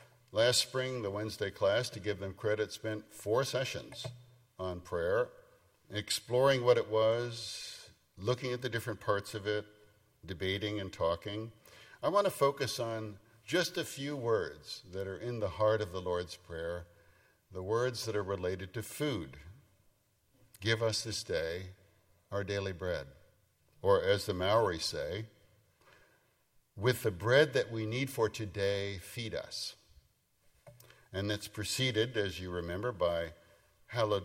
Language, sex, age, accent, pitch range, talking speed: English, male, 50-69, American, 95-125 Hz, 145 wpm